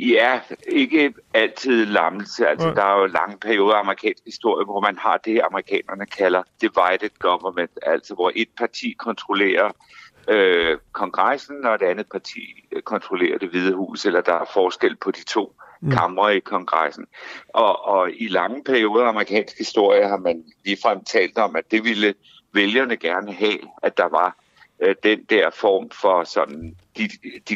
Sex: male